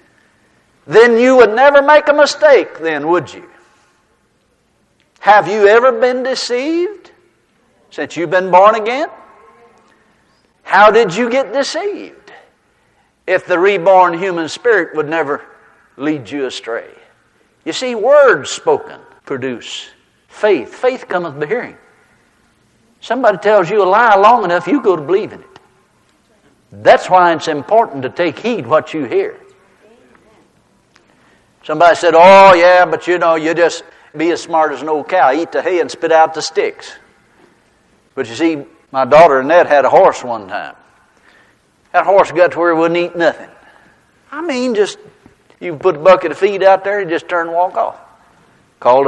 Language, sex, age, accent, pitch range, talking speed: English, male, 60-79, American, 160-260 Hz, 160 wpm